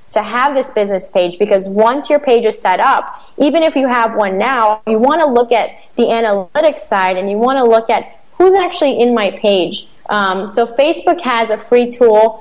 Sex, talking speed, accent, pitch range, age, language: female, 215 wpm, American, 205-250 Hz, 20-39, English